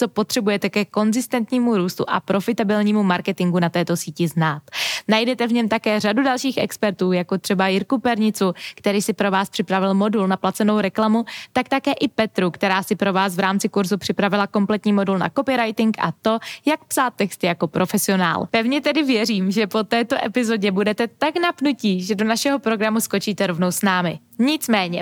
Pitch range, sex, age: 195-245 Hz, female, 20-39